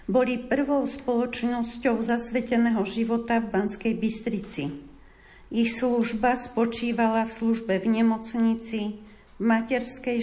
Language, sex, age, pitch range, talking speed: Slovak, female, 50-69, 225-255 Hz, 100 wpm